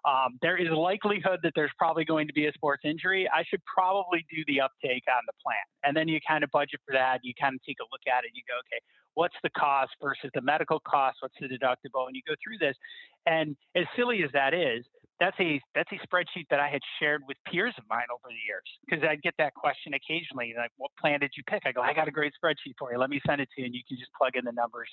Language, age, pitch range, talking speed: English, 30-49, 130-170 Hz, 275 wpm